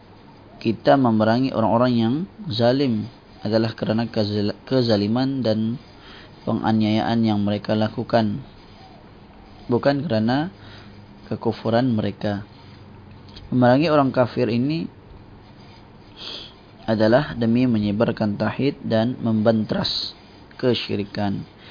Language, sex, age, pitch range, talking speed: Malay, male, 20-39, 105-120 Hz, 75 wpm